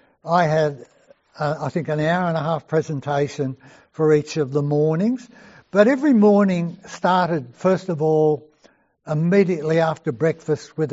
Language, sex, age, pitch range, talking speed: English, male, 60-79, 150-190 Hz, 150 wpm